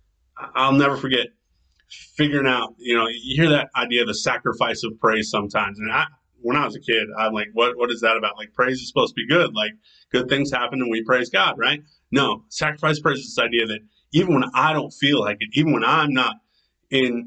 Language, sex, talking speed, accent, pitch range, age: English, male, 230 wpm, American, 105-130 Hz, 30-49